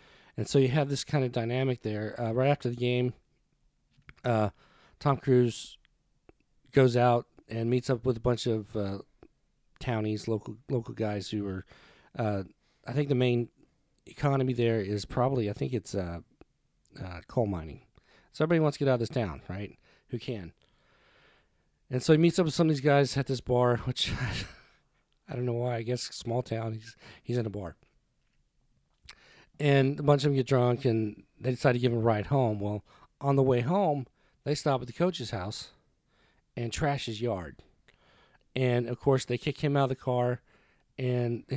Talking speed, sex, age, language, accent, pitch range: 190 wpm, male, 40-59, English, American, 110-135 Hz